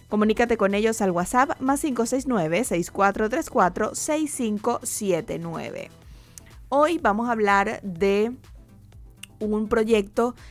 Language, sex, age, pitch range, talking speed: Spanish, female, 20-39, 195-240 Hz, 80 wpm